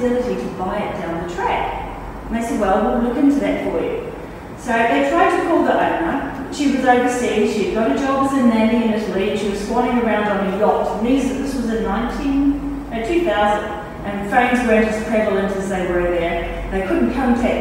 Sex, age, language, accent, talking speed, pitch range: female, 40-59, English, Australian, 210 wpm, 210-275 Hz